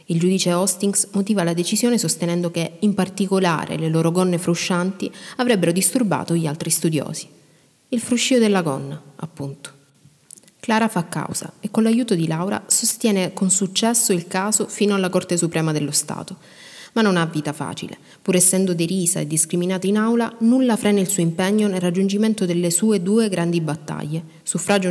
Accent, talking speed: native, 165 wpm